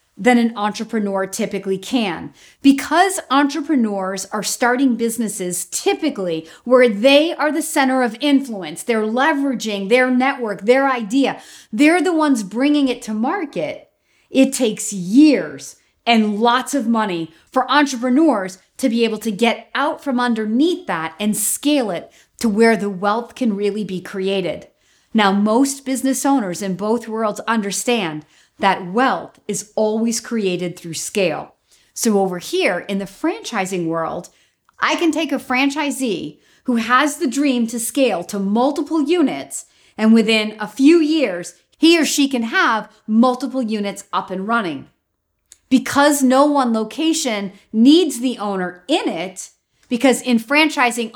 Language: English